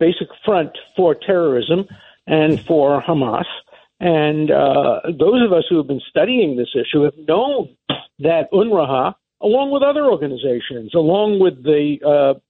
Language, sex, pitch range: English, male, 140-190 Hz